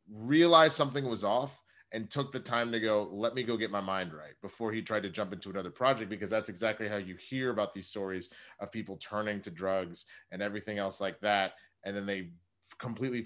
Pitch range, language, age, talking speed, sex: 95-115 Hz, English, 30-49, 215 wpm, male